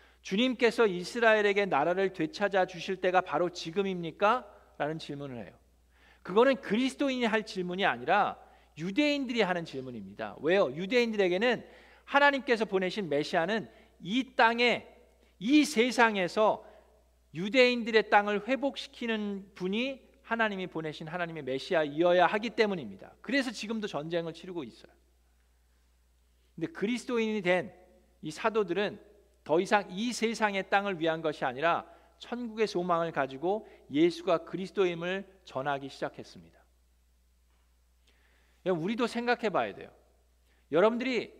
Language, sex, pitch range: Korean, male, 150-220 Hz